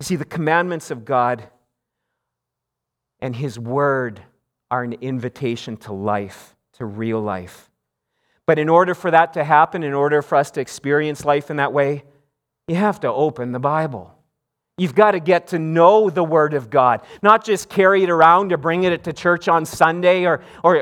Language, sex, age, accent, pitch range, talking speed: English, male, 40-59, American, 165-230 Hz, 185 wpm